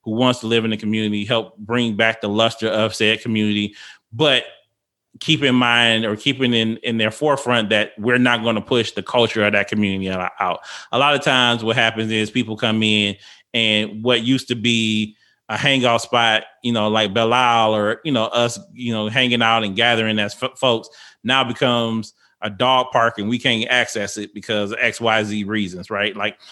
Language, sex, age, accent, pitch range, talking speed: English, male, 20-39, American, 105-120 Hz, 200 wpm